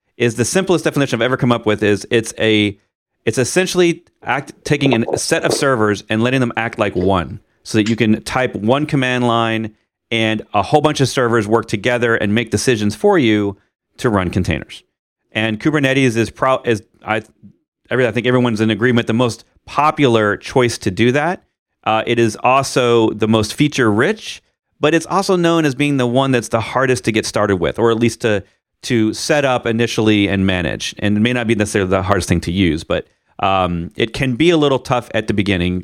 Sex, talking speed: male, 205 wpm